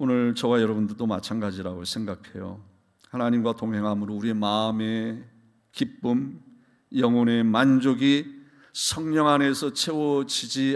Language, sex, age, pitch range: Korean, male, 40-59, 105-160 Hz